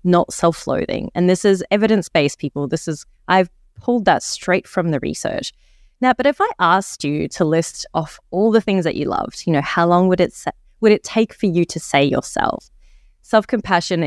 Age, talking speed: 20-39, 200 wpm